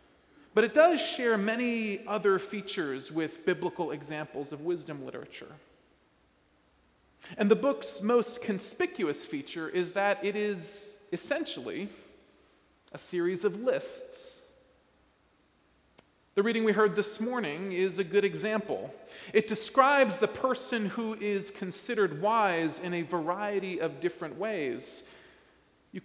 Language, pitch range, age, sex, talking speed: English, 175-235 Hz, 40-59, male, 120 wpm